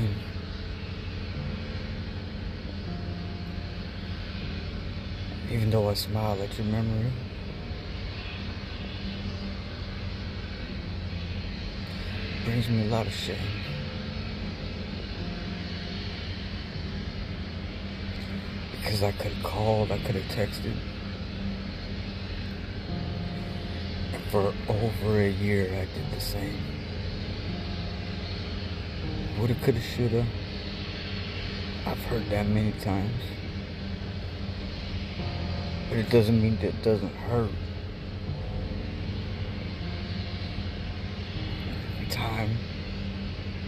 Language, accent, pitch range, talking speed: English, American, 95-100 Hz, 70 wpm